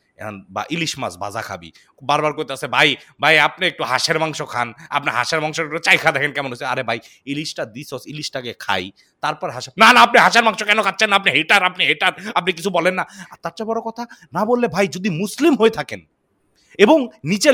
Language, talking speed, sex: Bengali, 210 wpm, male